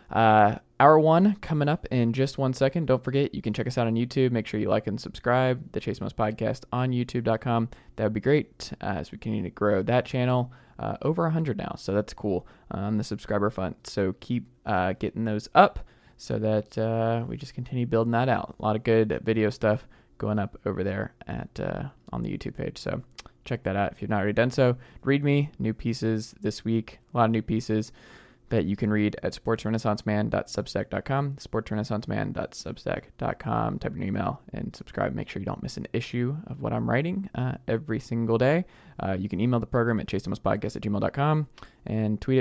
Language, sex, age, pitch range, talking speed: English, male, 20-39, 105-125 Hz, 215 wpm